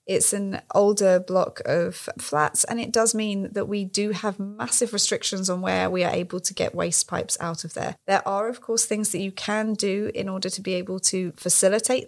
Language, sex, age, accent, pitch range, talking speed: English, female, 30-49, British, 180-205 Hz, 220 wpm